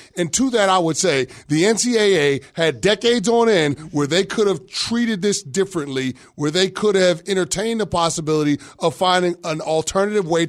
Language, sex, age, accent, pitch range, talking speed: English, male, 30-49, American, 160-210 Hz, 175 wpm